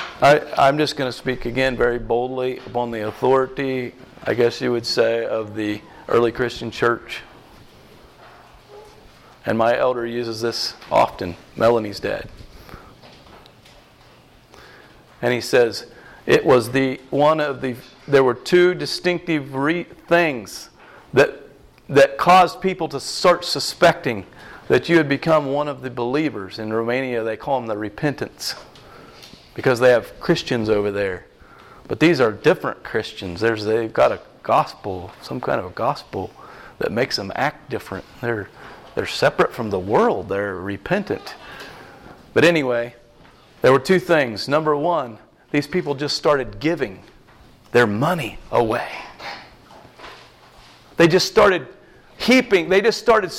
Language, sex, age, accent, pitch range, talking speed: English, male, 40-59, American, 120-180 Hz, 135 wpm